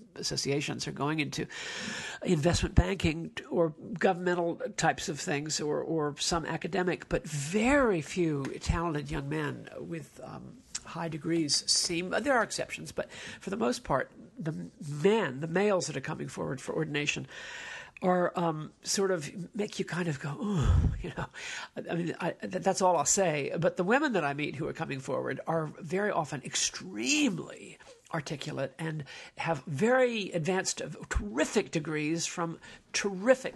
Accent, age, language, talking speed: American, 50-69, English, 155 wpm